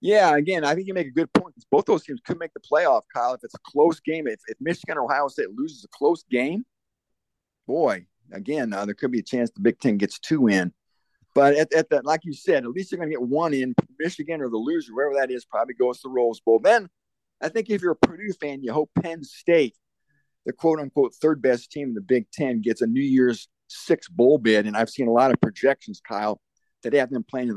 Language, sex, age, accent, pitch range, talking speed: English, male, 50-69, American, 110-160 Hz, 245 wpm